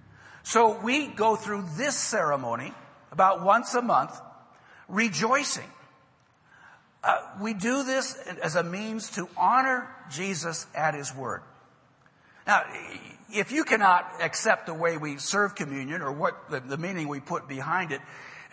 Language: English